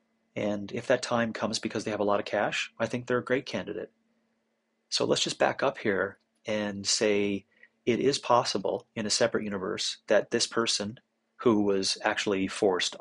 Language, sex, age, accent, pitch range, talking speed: English, male, 30-49, American, 100-115 Hz, 185 wpm